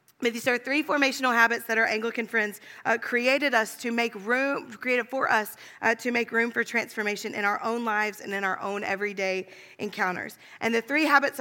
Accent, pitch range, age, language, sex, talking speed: American, 220-265 Hz, 40-59, English, female, 200 wpm